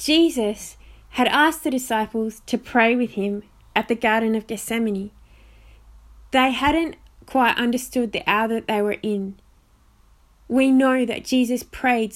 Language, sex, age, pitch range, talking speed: English, female, 20-39, 195-255 Hz, 145 wpm